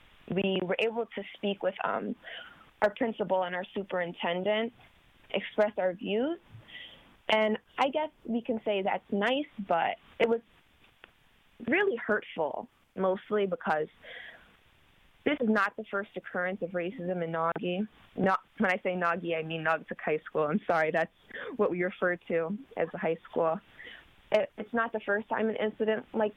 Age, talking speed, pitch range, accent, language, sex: 20-39, 155 wpm, 180-225 Hz, American, English, female